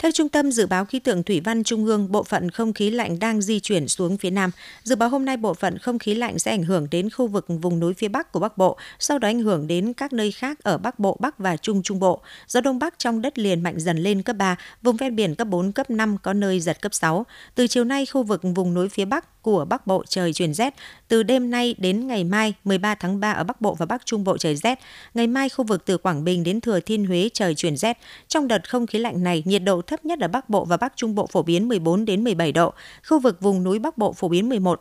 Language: Vietnamese